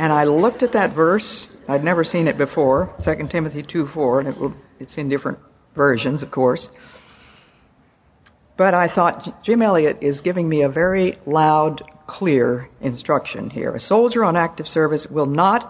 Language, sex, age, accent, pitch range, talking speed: English, female, 60-79, American, 140-185 Hz, 160 wpm